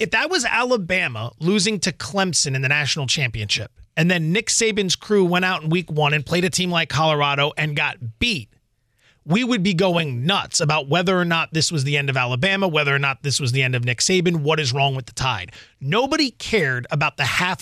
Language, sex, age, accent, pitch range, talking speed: English, male, 30-49, American, 135-190 Hz, 225 wpm